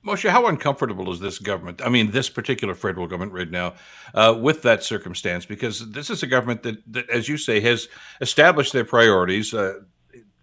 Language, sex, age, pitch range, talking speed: English, male, 60-79, 100-125 Hz, 190 wpm